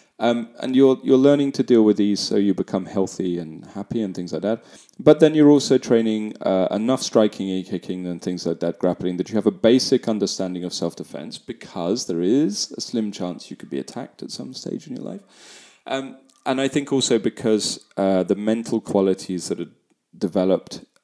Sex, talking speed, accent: male, 205 wpm, British